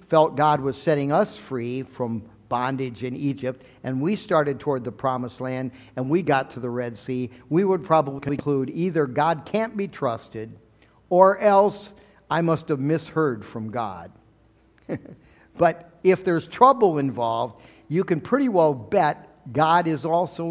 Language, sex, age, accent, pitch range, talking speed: English, male, 50-69, American, 120-165 Hz, 160 wpm